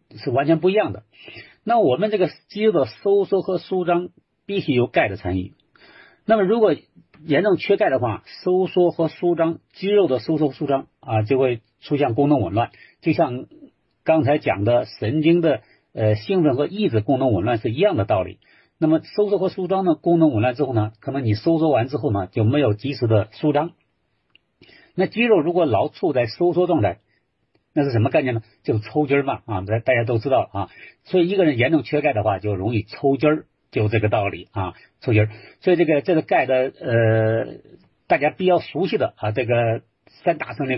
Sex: male